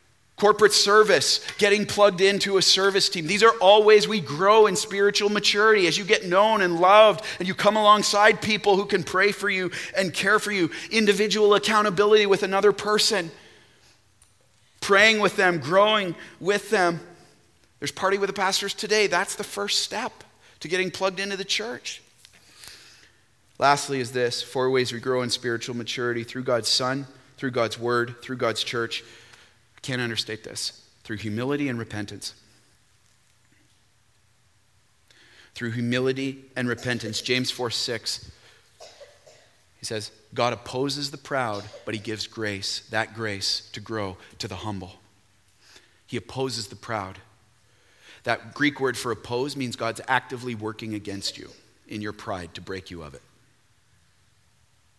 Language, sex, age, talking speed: English, male, 30-49, 150 wpm